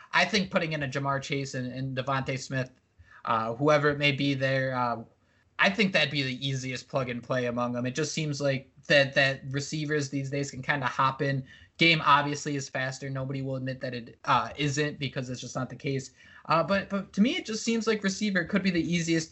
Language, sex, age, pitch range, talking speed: English, male, 20-39, 130-160 Hz, 225 wpm